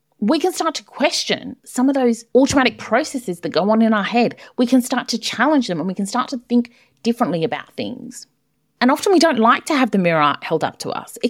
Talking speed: 240 wpm